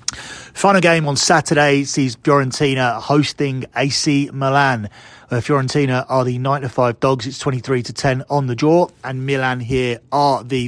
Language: English